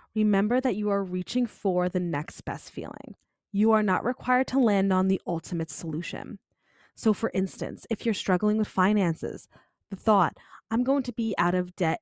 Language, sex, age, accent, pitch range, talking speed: English, female, 20-39, American, 170-220 Hz, 185 wpm